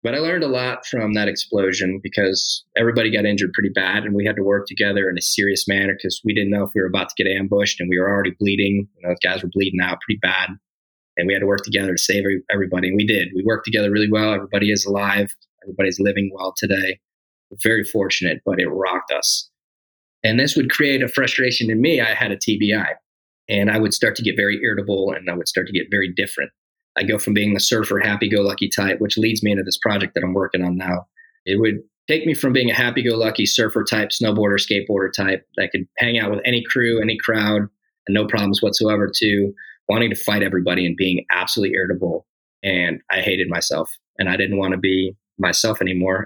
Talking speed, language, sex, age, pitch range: 225 wpm, English, male, 20-39, 95-110 Hz